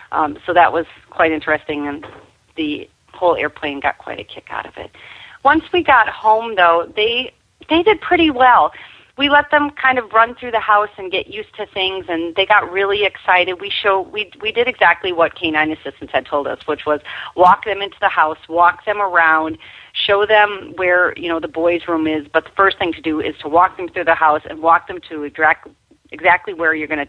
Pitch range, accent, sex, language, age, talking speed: 155-210 Hz, American, female, English, 40-59, 225 wpm